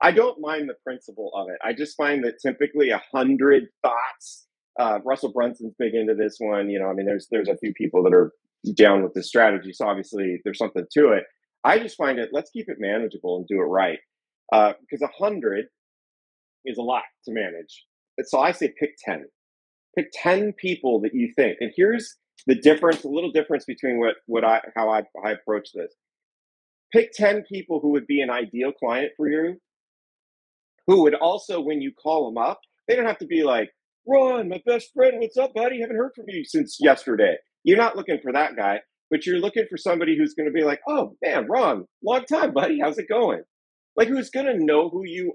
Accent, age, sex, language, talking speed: American, 30-49, male, English, 215 wpm